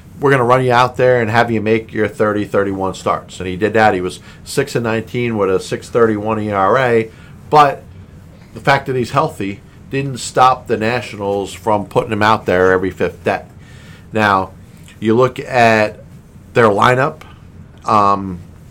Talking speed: 165 wpm